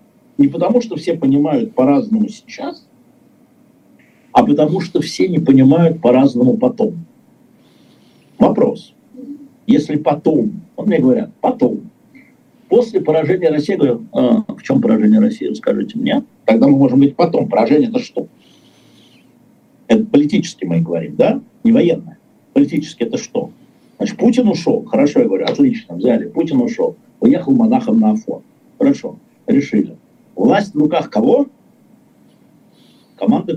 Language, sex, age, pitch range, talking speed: Russian, male, 50-69, 215-260 Hz, 130 wpm